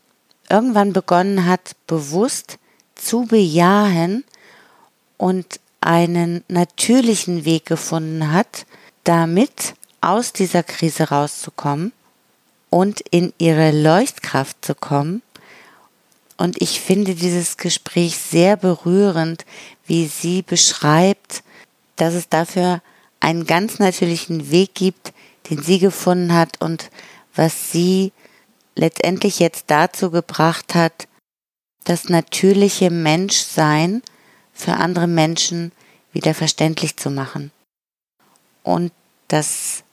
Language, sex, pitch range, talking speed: German, female, 160-190 Hz, 100 wpm